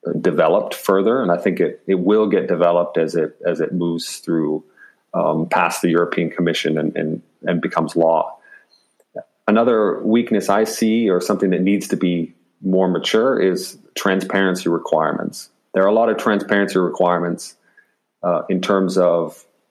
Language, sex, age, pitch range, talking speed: English, male, 40-59, 85-95 Hz, 160 wpm